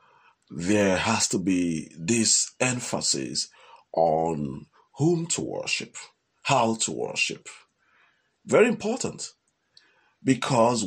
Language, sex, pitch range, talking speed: English, male, 90-130 Hz, 90 wpm